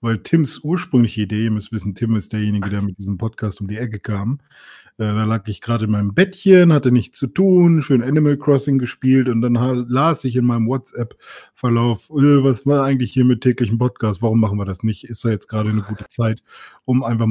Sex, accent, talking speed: male, German, 220 wpm